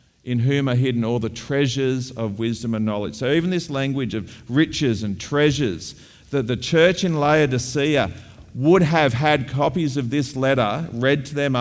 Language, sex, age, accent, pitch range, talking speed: English, male, 40-59, Australian, 110-145 Hz, 175 wpm